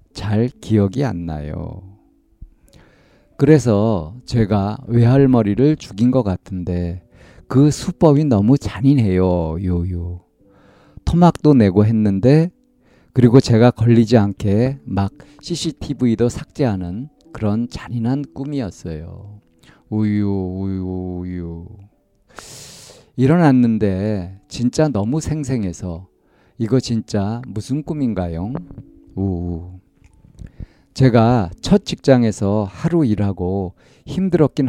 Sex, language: male, Korean